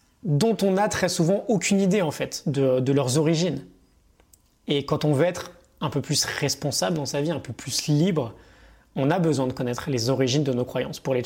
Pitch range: 120-155 Hz